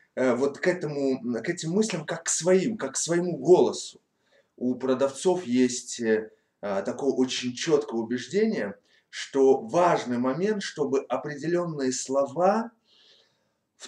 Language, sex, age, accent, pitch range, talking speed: Russian, male, 30-49, native, 135-195 Hz, 115 wpm